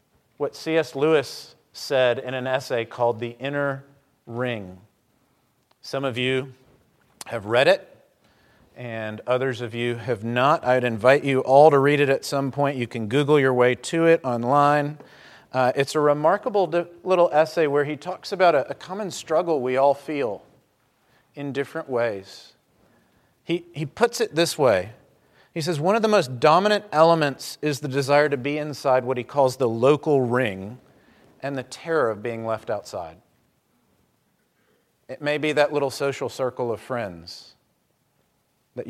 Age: 40-59